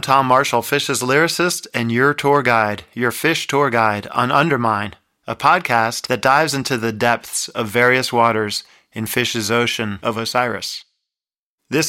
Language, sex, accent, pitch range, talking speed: English, male, American, 110-130 Hz, 150 wpm